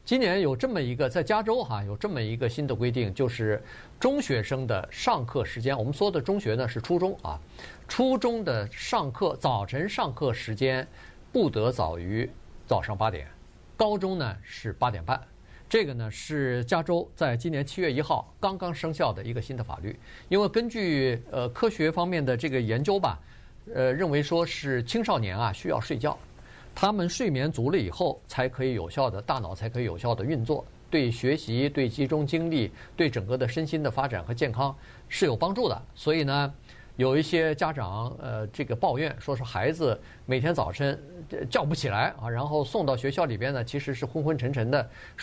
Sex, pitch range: male, 115-160 Hz